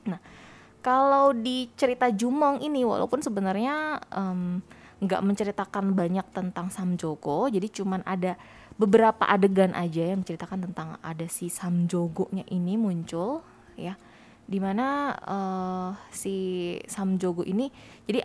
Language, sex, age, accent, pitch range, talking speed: Indonesian, female, 20-39, native, 175-230 Hz, 115 wpm